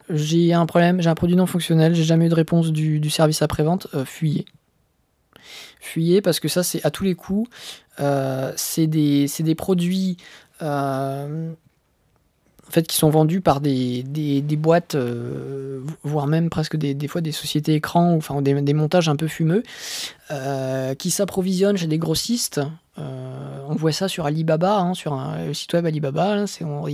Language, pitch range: French, 150-175 Hz